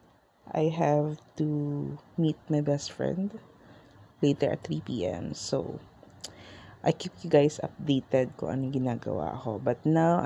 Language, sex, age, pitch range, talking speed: English, female, 20-39, 130-160 Hz, 135 wpm